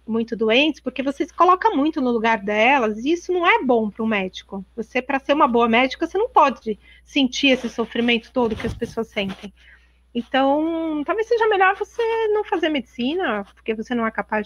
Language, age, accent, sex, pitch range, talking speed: Portuguese, 30-49, Brazilian, female, 225-295 Hz, 200 wpm